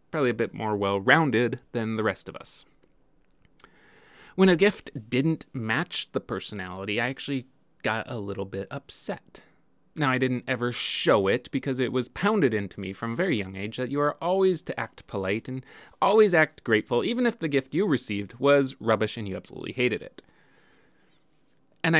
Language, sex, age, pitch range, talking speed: English, male, 30-49, 110-155 Hz, 175 wpm